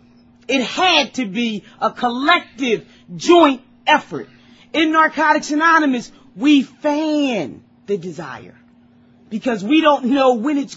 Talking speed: 115 wpm